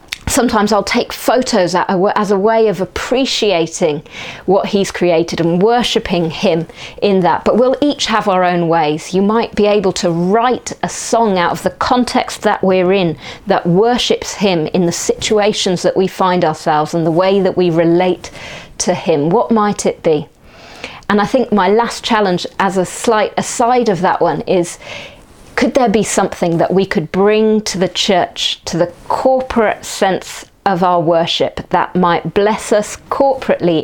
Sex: female